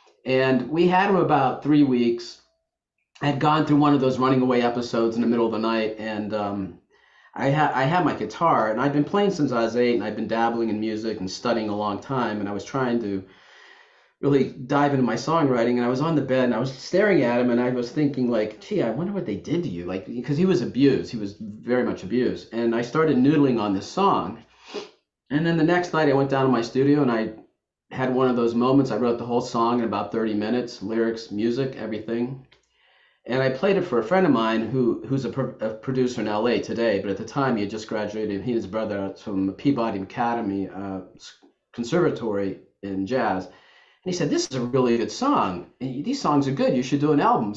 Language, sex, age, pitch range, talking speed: English, male, 40-59, 110-140 Hz, 235 wpm